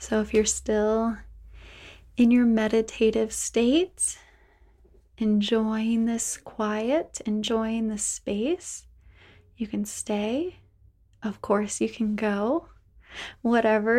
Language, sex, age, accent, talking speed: English, female, 20-39, American, 100 wpm